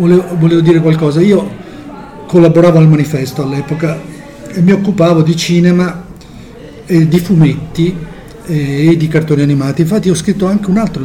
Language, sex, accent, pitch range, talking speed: Italian, male, native, 145-180 Hz, 140 wpm